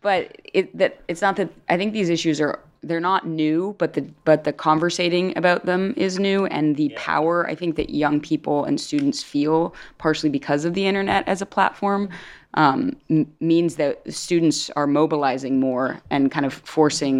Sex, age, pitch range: female, 20-39, 140-165 Hz